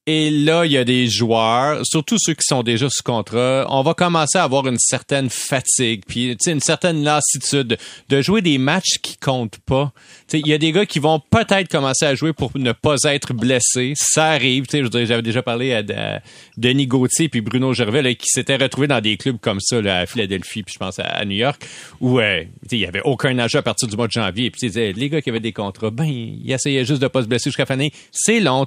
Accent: Canadian